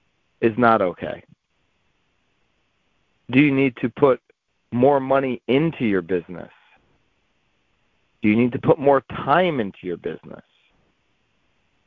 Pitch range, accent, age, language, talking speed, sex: 115-140 Hz, American, 40-59, English, 115 wpm, male